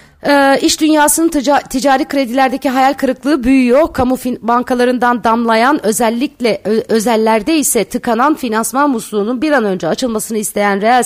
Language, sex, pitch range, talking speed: Turkish, female, 200-250 Hz, 140 wpm